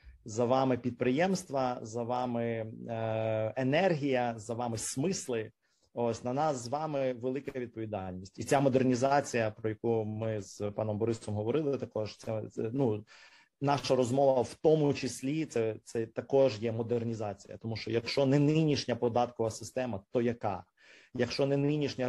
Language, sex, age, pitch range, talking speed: Ukrainian, male, 30-49, 110-130 Hz, 140 wpm